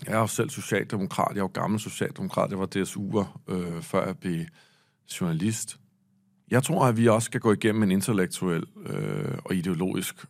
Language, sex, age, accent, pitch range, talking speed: Danish, male, 40-59, native, 95-135 Hz, 190 wpm